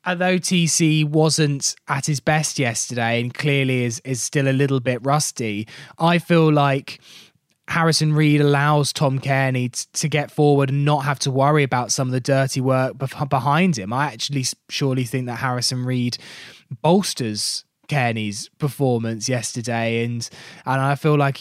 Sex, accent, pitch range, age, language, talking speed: male, British, 125-150 Hz, 20-39, English, 165 wpm